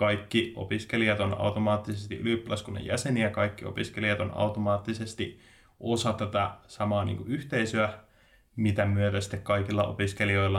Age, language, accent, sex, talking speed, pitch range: 20-39, Finnish, native, male, 120 wpm, 100-110 Hz